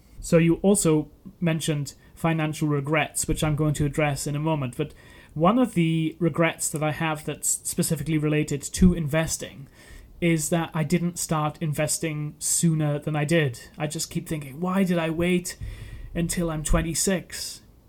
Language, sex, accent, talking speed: English, male, British, 160 wpm